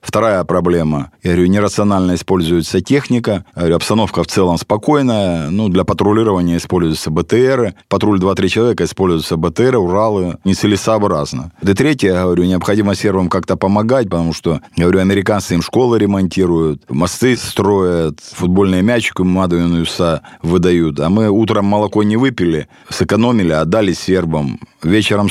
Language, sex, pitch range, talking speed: Russian, male, 85-105 Hz, 135 wpm